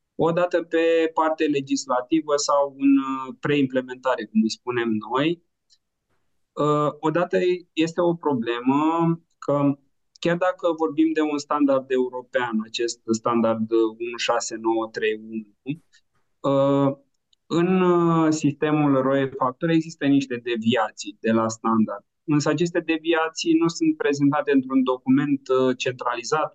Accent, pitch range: native, 125-155 Hz